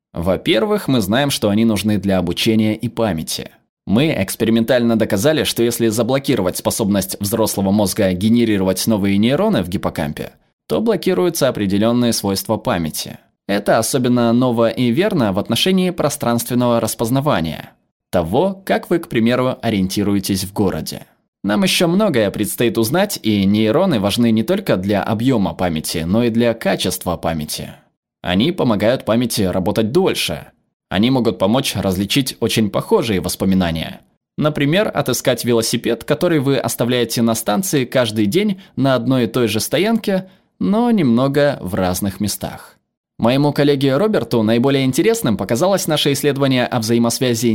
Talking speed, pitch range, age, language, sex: 135 wpm, 105-135 Hz, 20-39, Russian, male